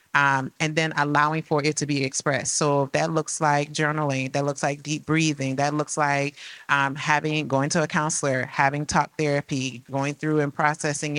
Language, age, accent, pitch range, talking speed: English, 30-49, American, 145-165 Hz, 190 wpm